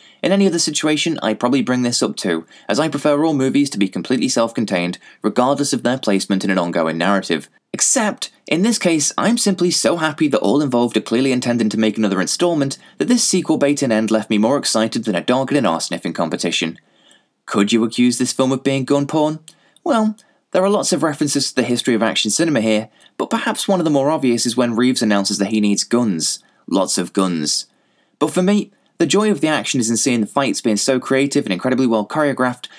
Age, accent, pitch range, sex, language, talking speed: 20-39, British, 110-165 Hz, male, English, 225 wpm